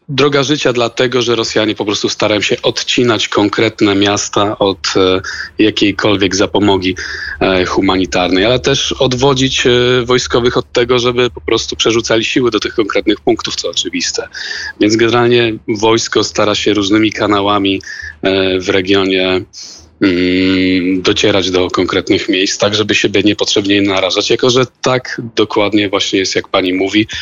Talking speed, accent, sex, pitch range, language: 130 wpm, native, male, 95-125 Hz, Polish